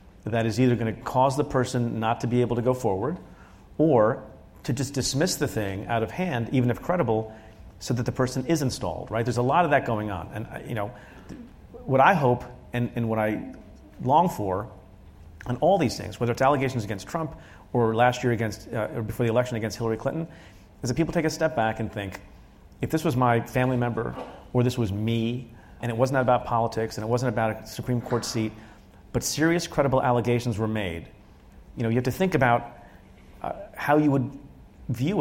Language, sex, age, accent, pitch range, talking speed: English, male, 40-59, American, 110-130 Hz, 210 wpm